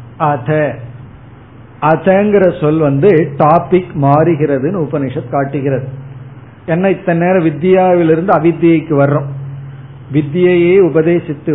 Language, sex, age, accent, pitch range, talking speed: Tamil, male, 50-69, native, 135-175 Hz, 75 wpm